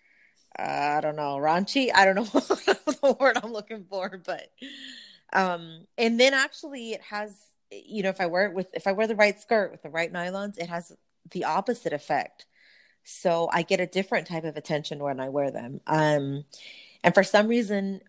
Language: English